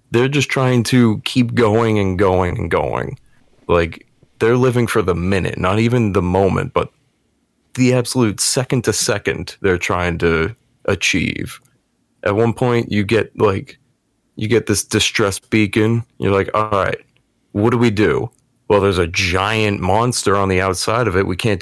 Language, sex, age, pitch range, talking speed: English, male, 30-49, 95-125 Hz, 170 wpm